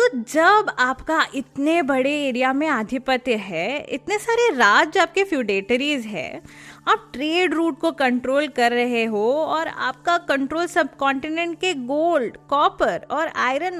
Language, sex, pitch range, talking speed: Hindi, female, 240-355 Hz, 145 wpm